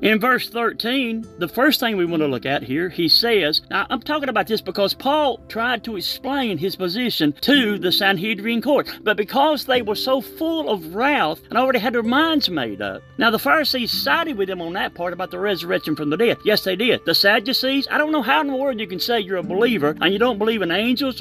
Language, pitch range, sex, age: English, 185-265 Hz, male, 40-59